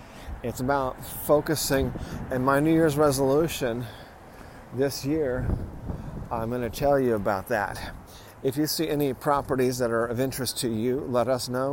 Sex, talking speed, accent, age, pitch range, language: male, 155 wpm, American, 40-59, 115-140 Hz, English